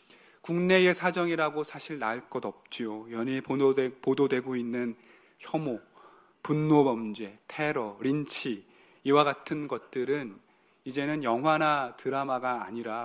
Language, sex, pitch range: Korean, male, 120-165 Hz